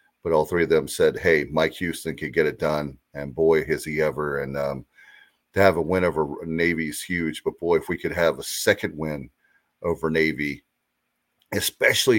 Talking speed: 195 wpm